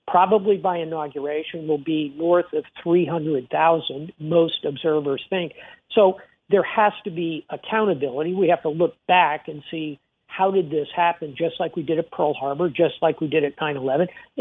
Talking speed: 170 wpm